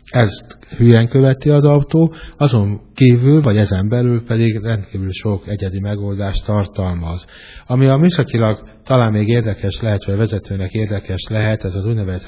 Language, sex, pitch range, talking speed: Hungarian, male, 100-120 Hz, 150 wpm